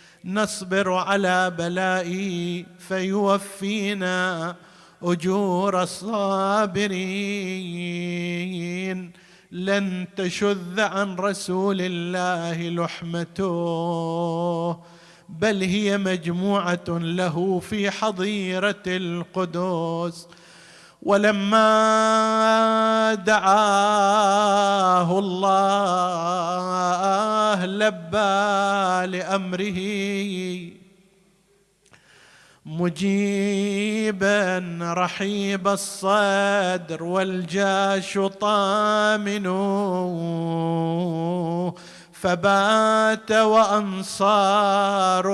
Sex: male